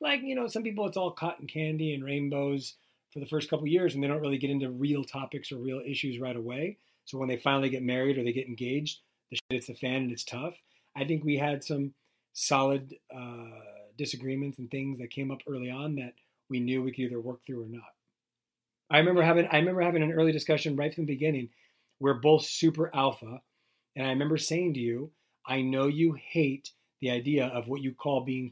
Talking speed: 225 wpm